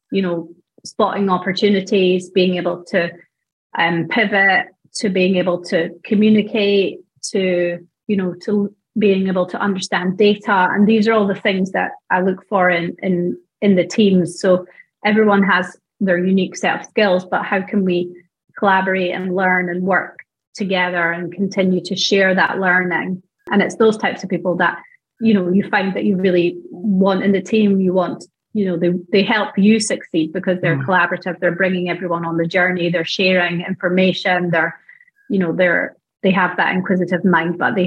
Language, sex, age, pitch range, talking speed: English, female, 30-49, 175-200 Hz, 180 wpm